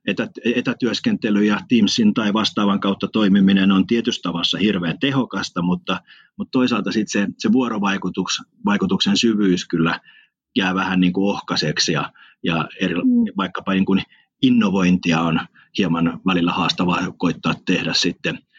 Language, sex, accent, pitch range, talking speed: Finnish, male, native, 95-150 Hz, 130 wpm